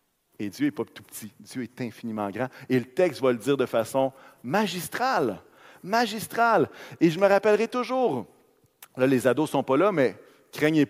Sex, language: male, French